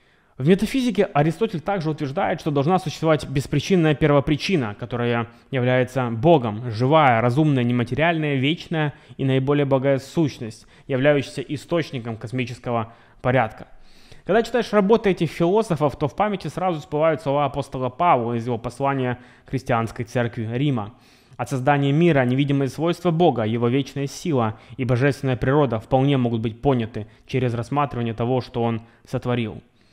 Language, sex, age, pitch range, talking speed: Russian, male, 20-39, 125-150 Hz, 135 wpm